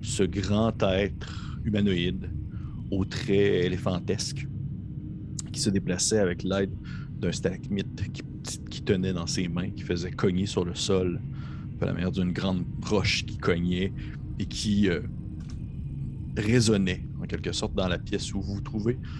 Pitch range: 95-120 Hz